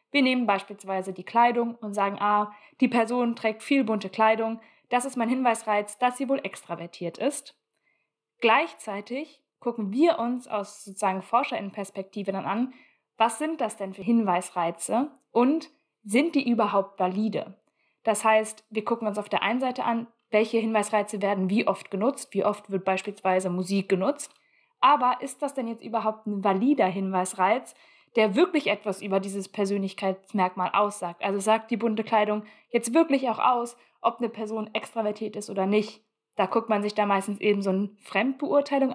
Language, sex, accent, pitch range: German, female, German, 205-255 Hz